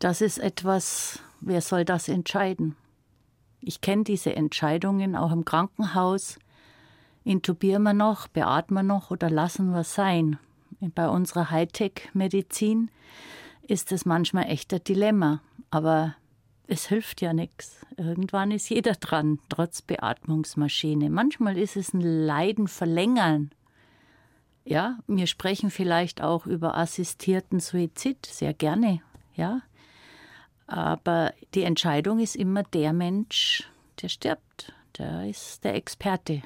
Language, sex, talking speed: German, female, 120 wpm